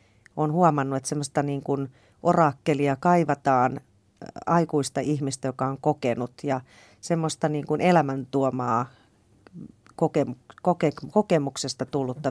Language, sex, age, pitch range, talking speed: Finnish, female, 40-59, 130-155 Hz, 95 wpm